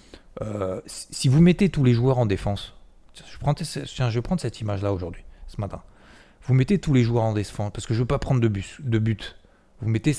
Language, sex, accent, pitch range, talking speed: French, male, French, 95-120 Hz, 225 wpm